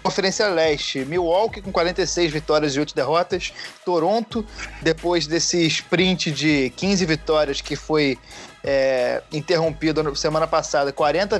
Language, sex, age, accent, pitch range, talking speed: Portuguese, male, 20-39, Brazilian, 150-180 Hz, 125 wpm